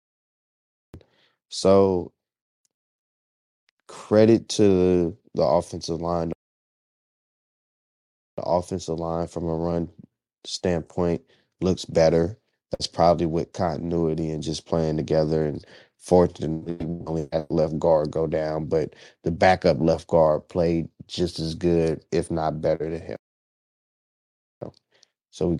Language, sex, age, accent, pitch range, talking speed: English, male, 20-39, American, 80-90 Hz, 115 wpm